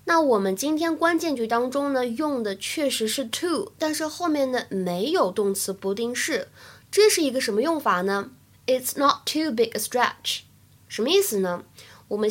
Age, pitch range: 20-39, 210-280 Hz